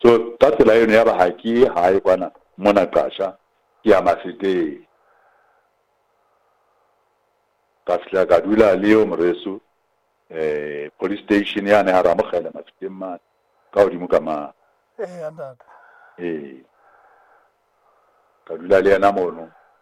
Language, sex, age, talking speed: English, male, 60-79, 40 wpm